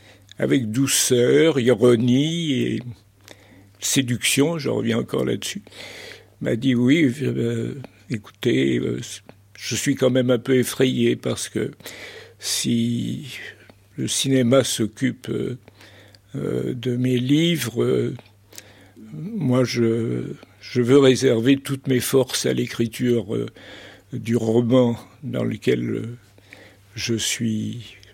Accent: French